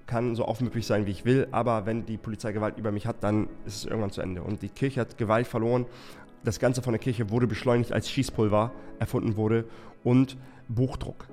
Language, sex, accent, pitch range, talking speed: German, male, German, 110-125 Hz, 210 wpm